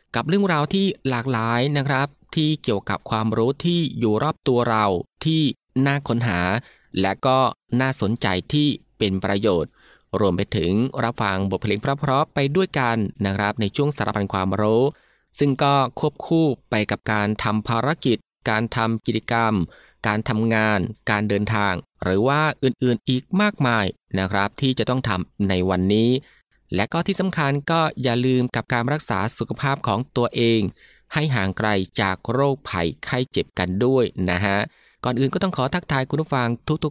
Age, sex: 20-39, male